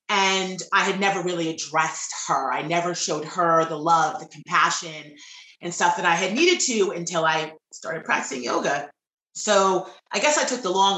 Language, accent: English, American